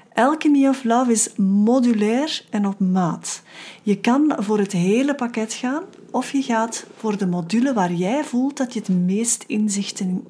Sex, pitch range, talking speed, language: female, 185-240 Hz, 170 wpm, Dutch